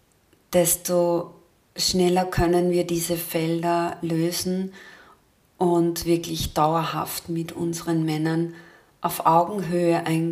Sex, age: female, 40-59